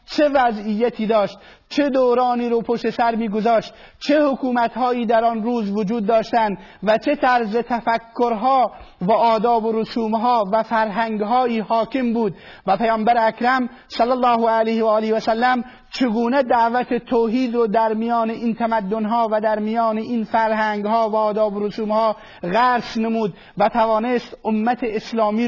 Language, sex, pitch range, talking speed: Persian, male, 215-235 Hz, 150 wpm